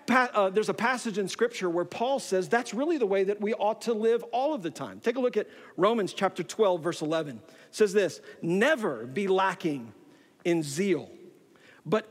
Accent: American